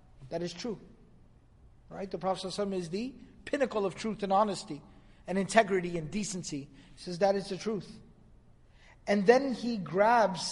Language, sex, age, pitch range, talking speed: English, male, 50-69, 200-295 Hz, 155 wpm